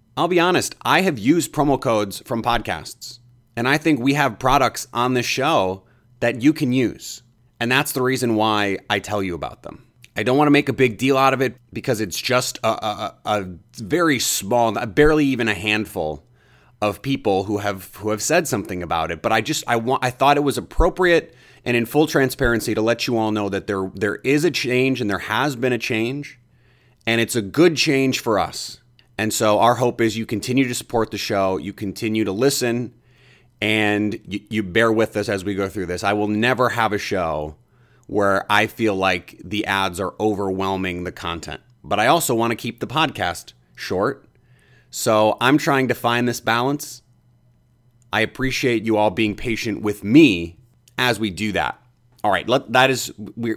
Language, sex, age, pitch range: English, male, 30-49, 105-130 Hz